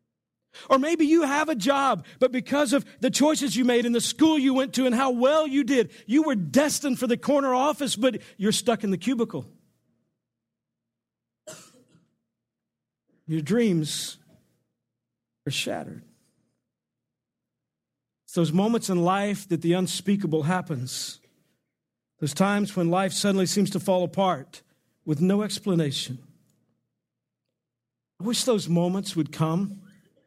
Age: 50-69